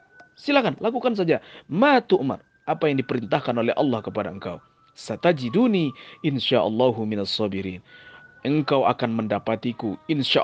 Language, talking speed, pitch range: Indonesian, 115 wpm, 110-170 Hz